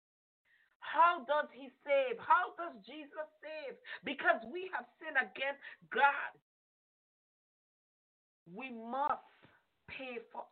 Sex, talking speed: female, 105 wpm